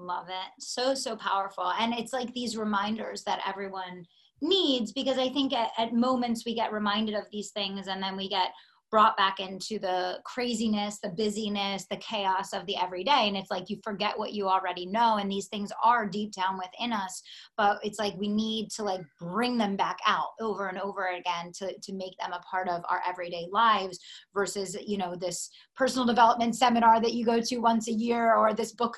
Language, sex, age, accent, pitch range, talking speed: English, female, 30-49, American, 190-225 Hz, 205 wpm